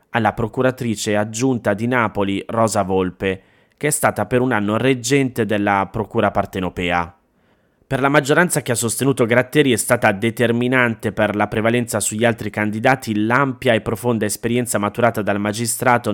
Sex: male